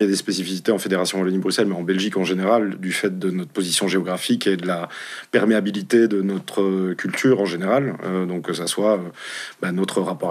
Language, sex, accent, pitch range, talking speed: French, male, French, 95-110 Hz, 215 wpm